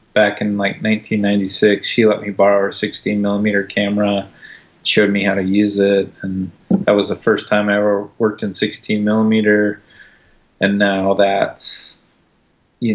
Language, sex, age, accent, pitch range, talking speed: English, male, 30-49, American, 100-110 Hz, 150 wpm